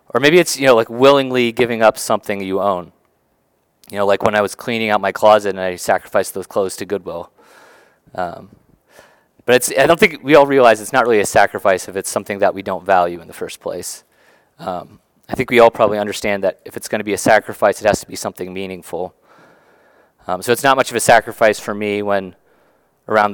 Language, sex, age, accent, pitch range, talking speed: English, male, 30-49, American, 95-125 Hz, 220 wpm